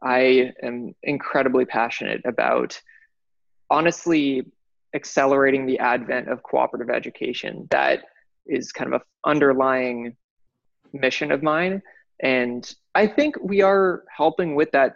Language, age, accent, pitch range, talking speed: English, 20-39, American, 130-160 Hz, 115 wpm